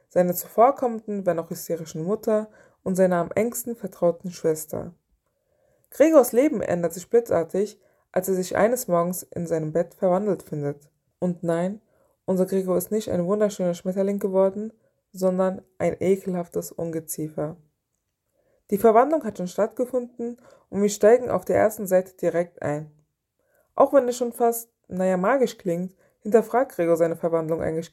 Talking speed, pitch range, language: 145 wpm, 170-210 Hz, German